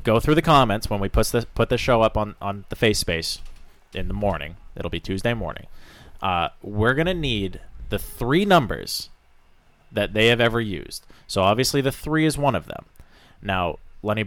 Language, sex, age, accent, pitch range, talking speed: English, male, 20-39, American, 90-120 Hz, 195 wpm